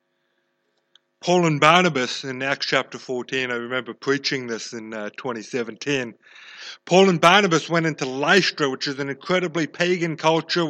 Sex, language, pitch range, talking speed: male, English, 150-190 Hz, 145 wpm